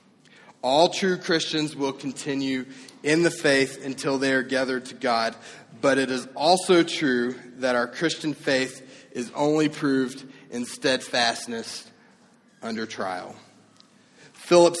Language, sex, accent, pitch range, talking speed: English, male, American, 125-160 Hz, 125 wpm